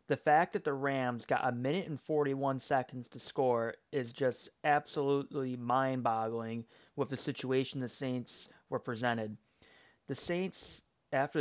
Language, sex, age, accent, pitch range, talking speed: English, male, 30-49, American, 130-155 Hz, 140 wpm